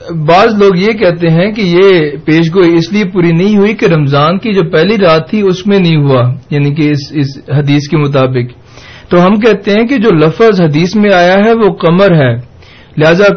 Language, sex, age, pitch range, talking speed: Urdu, male, 40-59, 145-190 Hz, 205 wpm